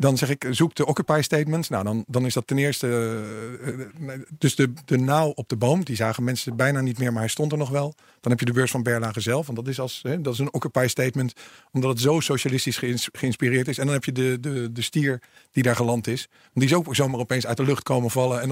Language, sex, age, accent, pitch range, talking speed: Dutch, male, 50-69, Dutch, 125-155 Hz, 260 wpm